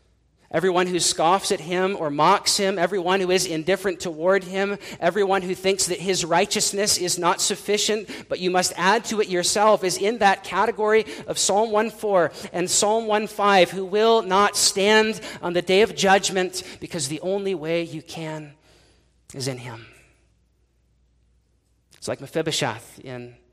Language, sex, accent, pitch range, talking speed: English, male, American, 150-195 Hz, 160 wpm